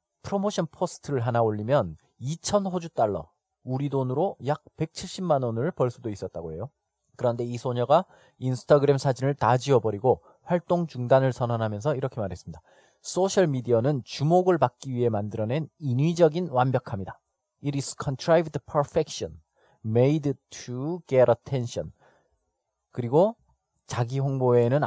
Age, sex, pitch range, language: 30-49, male, 120-150 Hz, Korean